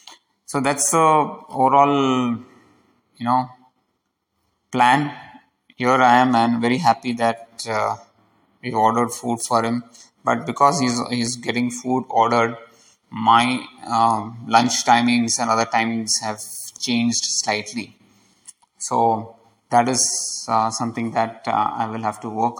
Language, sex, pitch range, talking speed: English, male, 115-125 Hz, 135 wpm